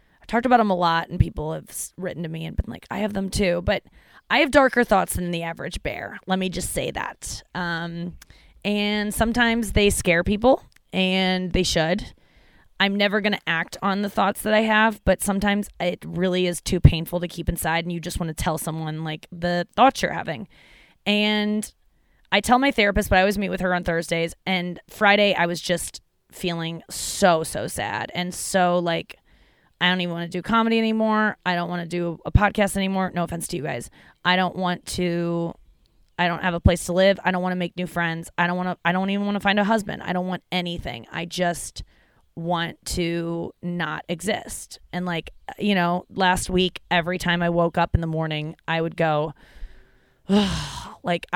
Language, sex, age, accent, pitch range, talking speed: English, female, 20-39, American, 170-200 Hz, 205 wpm